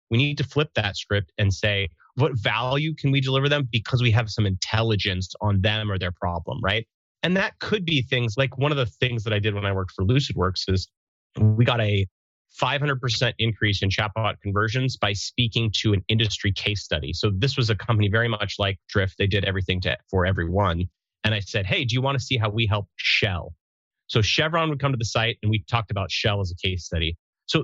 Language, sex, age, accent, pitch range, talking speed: English, male, 30-49, American, 100-140 Hz, 225 wpm